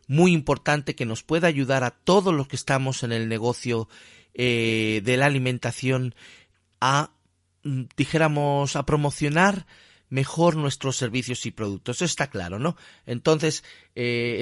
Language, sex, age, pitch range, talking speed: Spanish, male, 40-59, 125-170 Hz, 135 wpm